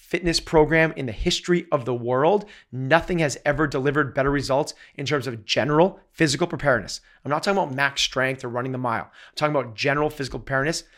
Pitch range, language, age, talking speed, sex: 130-160 Hz, English, 30-49, 195 wpm, male